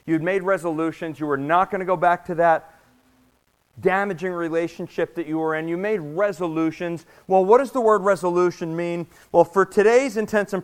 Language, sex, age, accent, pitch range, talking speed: English, male, 40-59, American, 160-200 Hz, 185 wpm